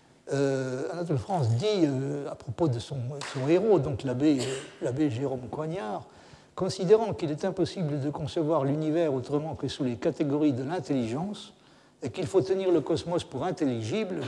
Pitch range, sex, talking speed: 130-185 Hz, male, 155 wpm